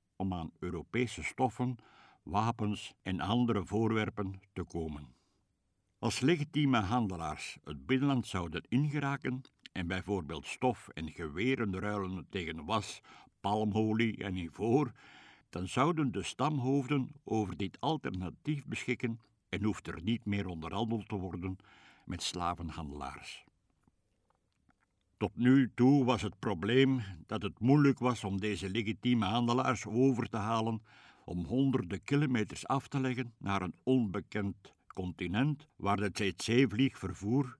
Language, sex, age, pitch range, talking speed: Dutch, male, 60-79, 95-130 Hz, 120 wpm